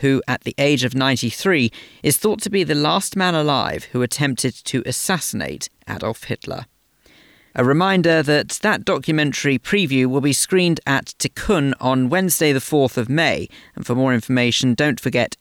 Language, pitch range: English, 120-160 Hz